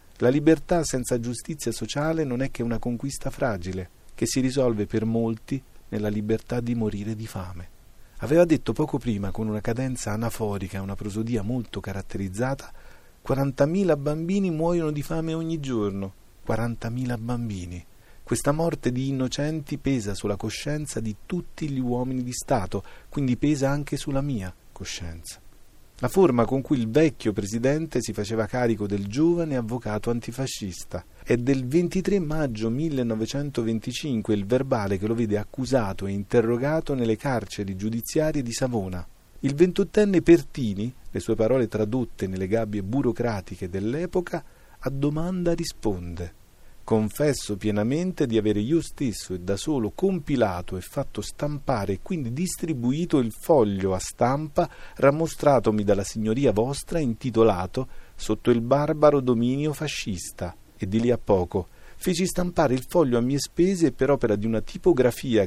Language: Italian